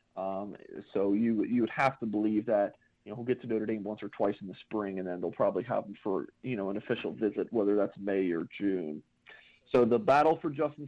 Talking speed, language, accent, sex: 245 wpm, English, American, male